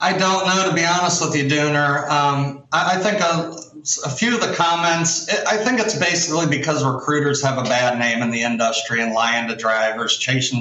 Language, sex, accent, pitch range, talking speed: English, male, American, 120-150 Hz, 210 wpm